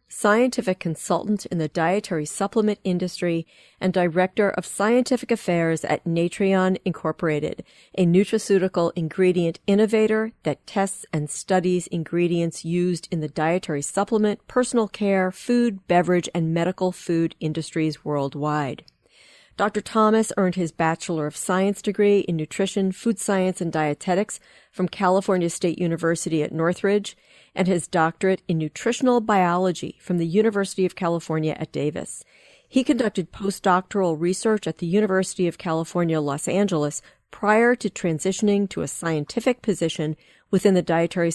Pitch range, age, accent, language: 165-200 Hz, 40-59, American, English